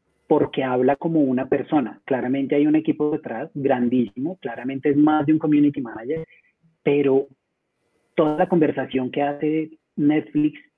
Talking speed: 140 wpm